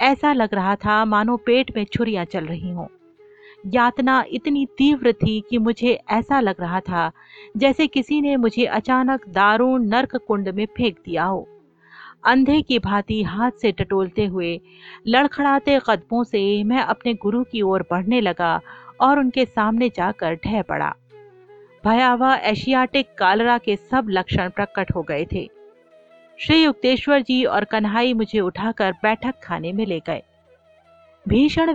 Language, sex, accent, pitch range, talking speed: Hindi, female, native, 200-275 Hz, 150 wpm